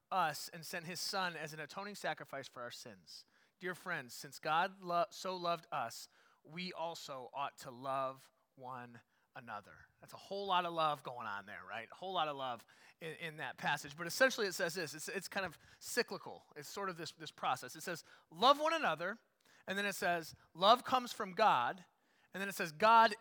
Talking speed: 205 wpm